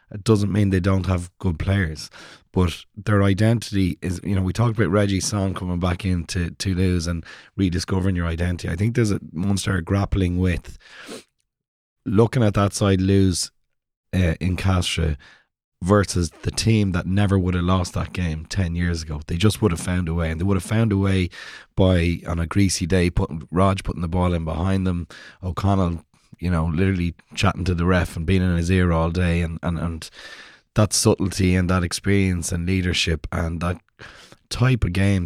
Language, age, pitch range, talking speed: English, 30-49, 85-100 Hz, 190 wpm